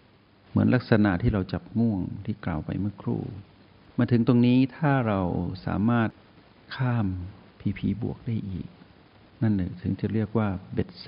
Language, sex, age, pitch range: Thai, male, 60-79, 90-115 Hz